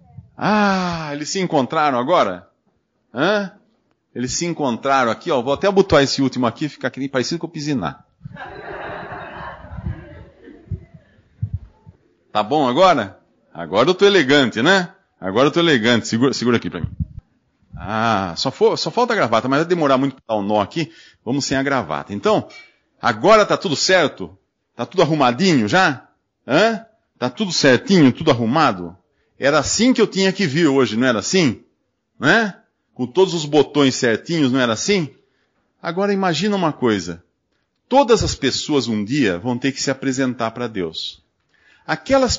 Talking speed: 160 wpm